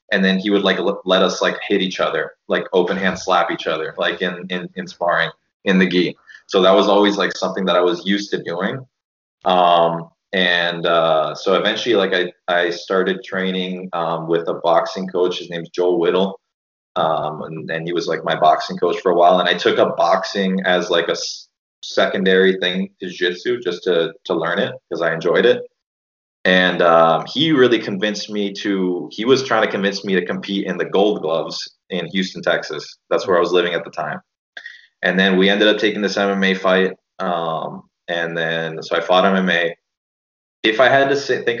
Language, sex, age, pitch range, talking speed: English, male, 20-39, 90-100 Hz, 205 wpm